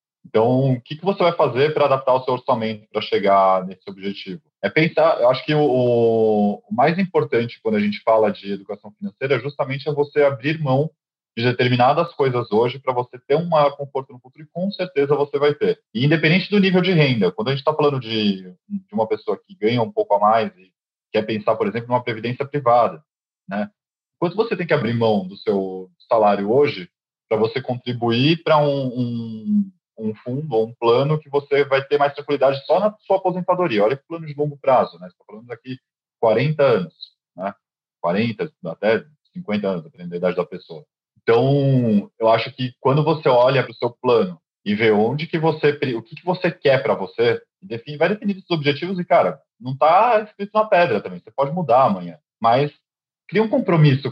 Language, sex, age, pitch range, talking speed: Portuguese, male, 20-39, 115-160 Hz, 200 wpm